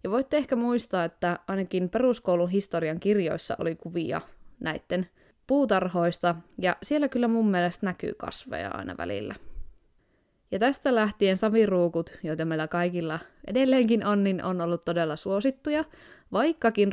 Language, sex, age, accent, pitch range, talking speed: Finnish, female, 20-39, native, 170-210 Hz, 130 wpm